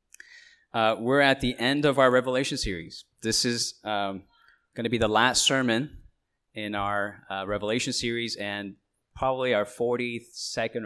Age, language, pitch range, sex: 20-39, English, 100-130 Hz, male